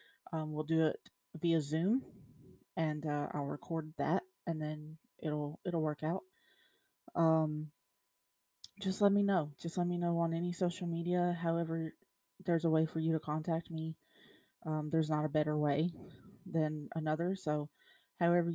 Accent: American